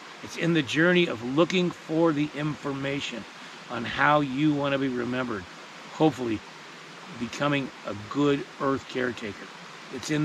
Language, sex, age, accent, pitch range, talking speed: English, male, 40-59, American, 125-160 Hz, 140 wpm